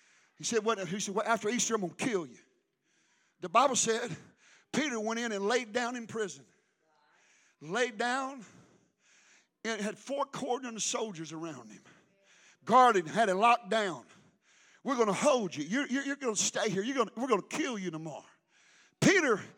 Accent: American